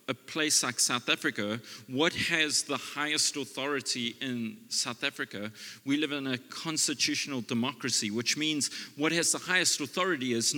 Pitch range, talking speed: 125-175 Hz, 155 wpm